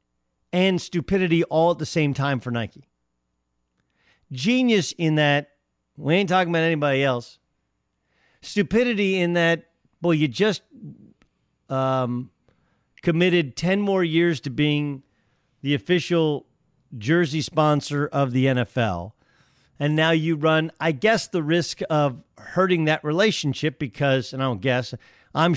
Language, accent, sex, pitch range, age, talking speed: English, American, male, 130-170 Hz, 50-69, 130 wpm